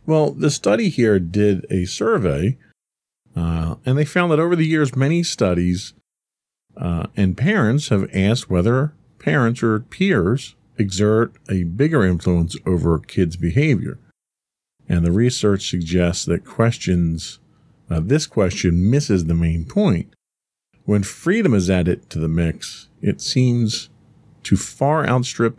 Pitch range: 95-130 Hz